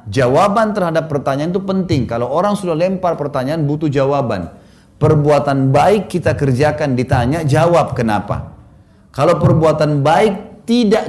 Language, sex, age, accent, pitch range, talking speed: Indonesian, male, 30-49, native, 120-175 Hz, 125 wpm